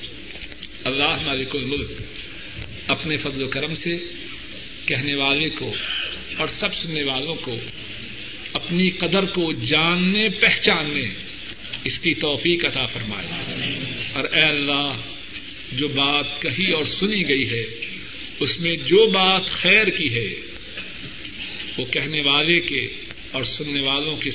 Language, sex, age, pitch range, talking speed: Urdu, male, 50-69, 120-145 Hz, 125 wpm